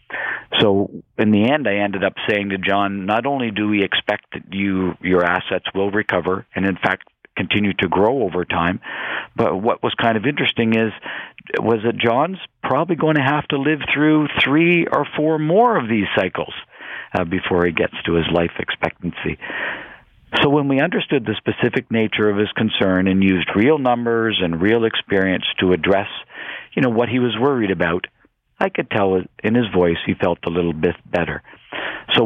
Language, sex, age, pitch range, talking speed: English, male, 50-69, 95-120 Hz, 185 wpm